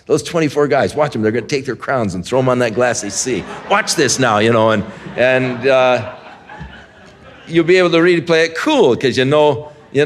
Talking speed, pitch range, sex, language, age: 235 wpm, 110-145 Hz, male, English, 50-69